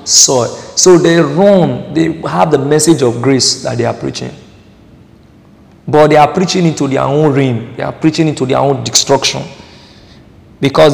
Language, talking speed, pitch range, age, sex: English, 165 wpm, 130-155 Hz, 50-69, male